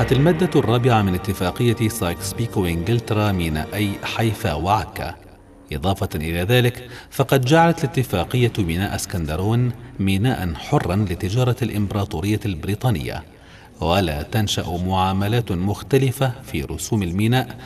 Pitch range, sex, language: 90-125 Hz, male, Arabic